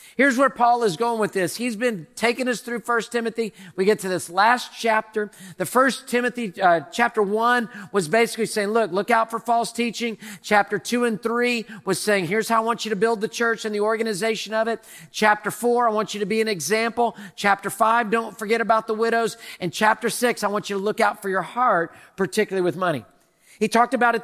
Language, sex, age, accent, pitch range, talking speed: English, male, 40-59, American, 195-235 Hz, 225 wpm